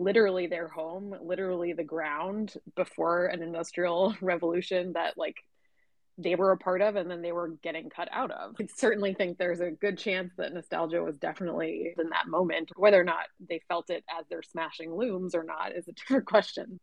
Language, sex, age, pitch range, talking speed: English, female, 20-39, 175-200 Hz, 195 wpm